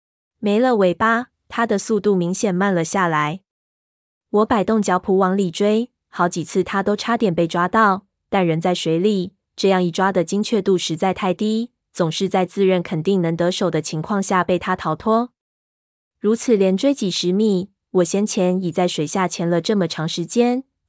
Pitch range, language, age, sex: 180-215 Hz, Chinese, 20-39, female